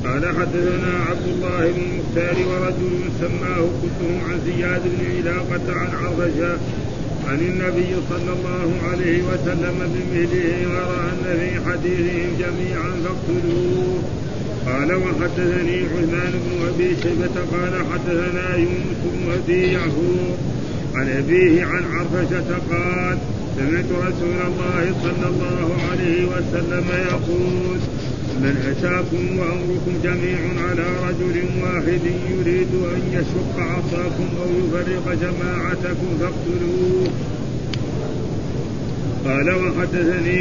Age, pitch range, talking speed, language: 50-69, 155-180 Hz, 105 wpm, Arabic